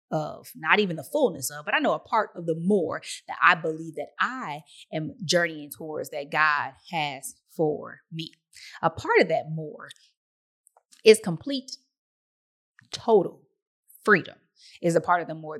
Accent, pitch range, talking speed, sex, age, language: American, 150-210 Hz, 160 wpm, female, 20-39, English